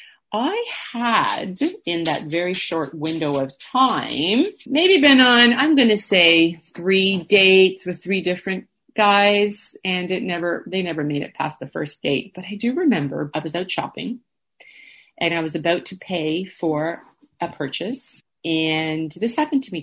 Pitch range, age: 160-230 Hz, 40-59